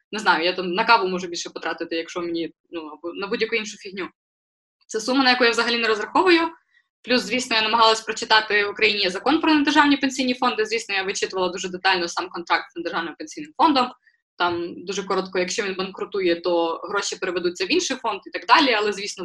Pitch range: 190-255 Hz